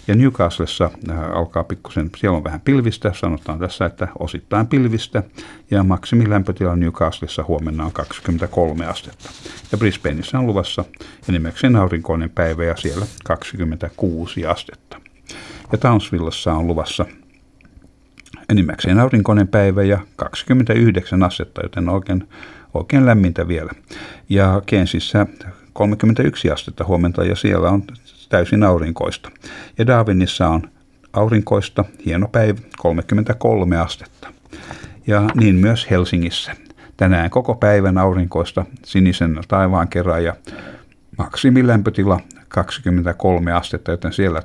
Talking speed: 110 wpm